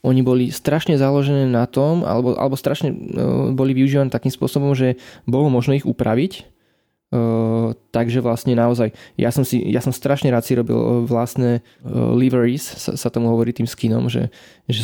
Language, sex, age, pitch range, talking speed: Slovak, male, 20-39, 120-135 Hz, 170 wpm